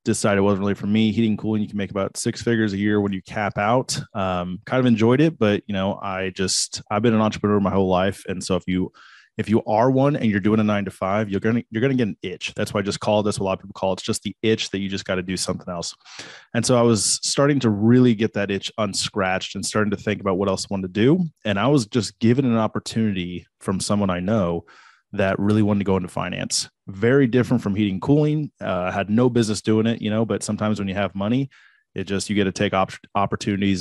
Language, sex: English, male